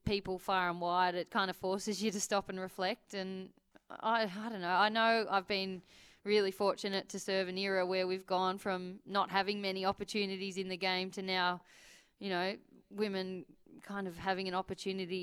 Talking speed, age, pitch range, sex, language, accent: 190 wpm, 20-39, 180-195 Hz, female, English, Australian